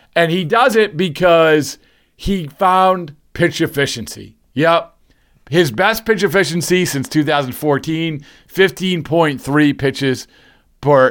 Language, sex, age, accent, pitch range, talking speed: English, male, 40-59, American, 135-185 Hz, 95 wpm